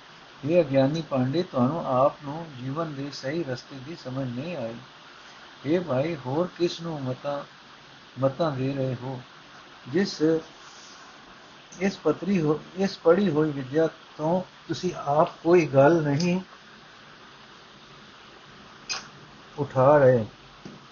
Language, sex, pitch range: Punjabi, male, 135-170 Hz